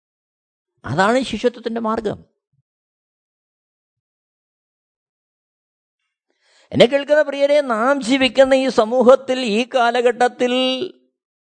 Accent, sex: native, male